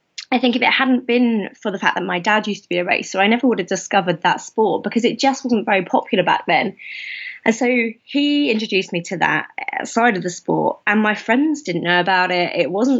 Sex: female